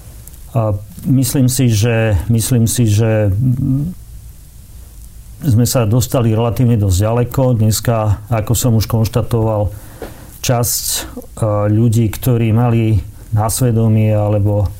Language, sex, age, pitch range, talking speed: Slovak, male, 40-59, 110-125 Hz, 95 wpm